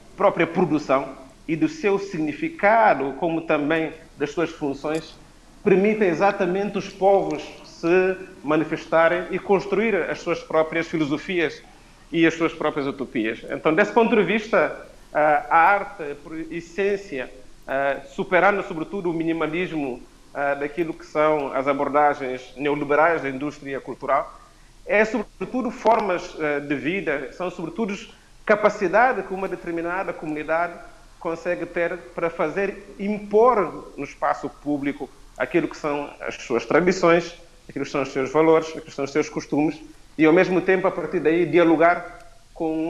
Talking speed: 135 wpm